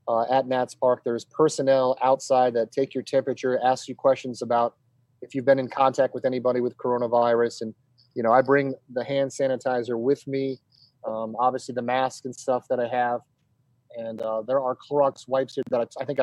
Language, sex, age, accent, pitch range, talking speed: English, male, 30-49, American, 120-135 Hz, 200 wpm